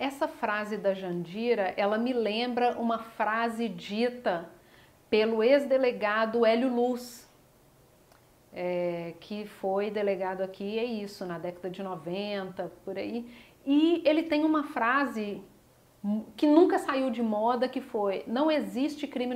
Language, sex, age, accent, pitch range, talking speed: Portuguese, female, 40-59, Brazilian, 210-280 Hz, 125 wpm